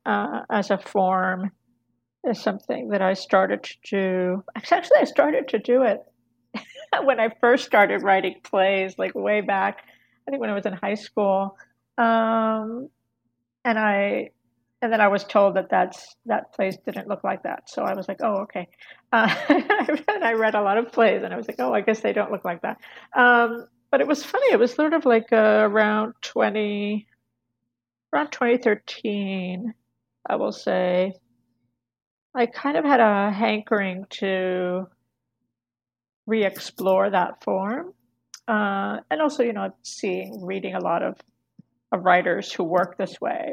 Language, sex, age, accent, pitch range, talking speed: English, female, 50-69, American, 180-225 Hz, 165 wpm